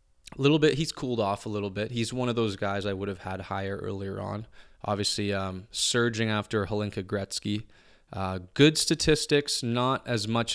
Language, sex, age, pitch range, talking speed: English, male, 20-39, 100-115 Hz, 190 wpm